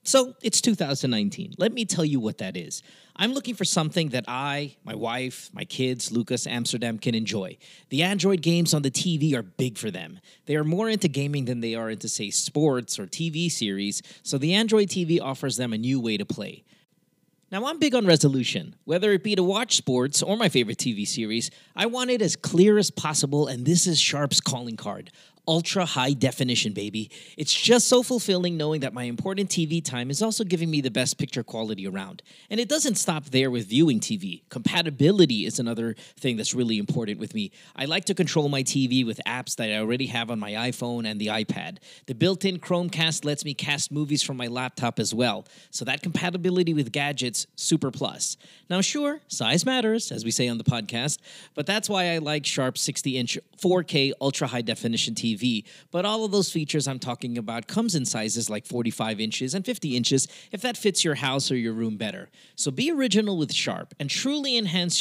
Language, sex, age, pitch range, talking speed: English, male, 30-49, 125-185 Hz, 205 wpm